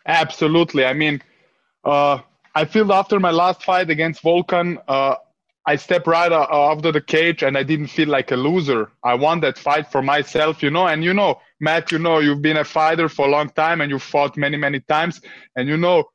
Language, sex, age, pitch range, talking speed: English, male, 20-39, 135-170 Hz, 215 wpm